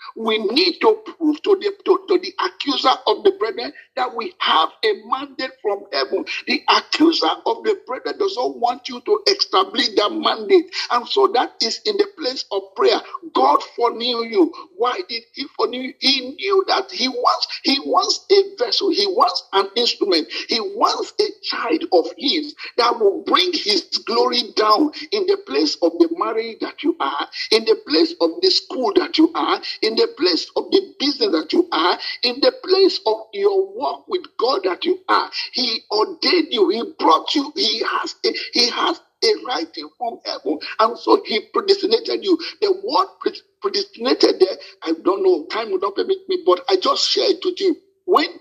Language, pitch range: English, 310-395 Hz